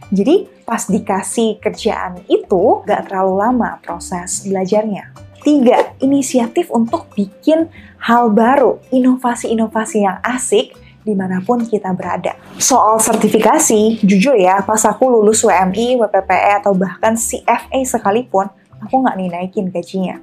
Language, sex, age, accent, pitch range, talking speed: Indonesian, female, 20-39, native, 200-260 Hz, 120 wpm